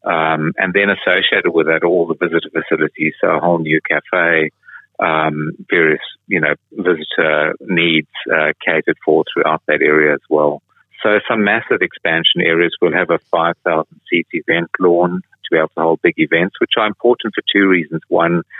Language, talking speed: English, 175 wpm